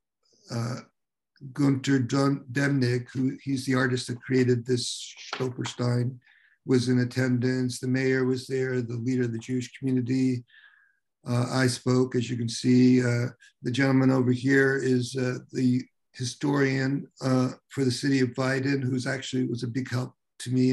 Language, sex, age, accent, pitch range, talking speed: English, male, 50-69, American, 125-140 Hz, 155 wpm